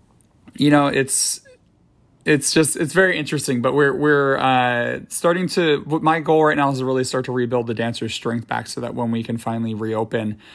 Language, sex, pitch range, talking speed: English, male, 115-130 Hz, 200 wpm